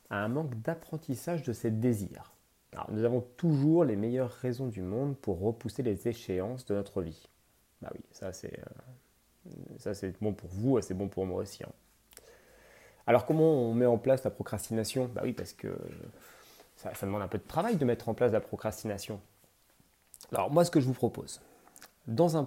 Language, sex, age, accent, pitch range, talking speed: French, male, 30-49, French, 105-140 Hz, 195 wpm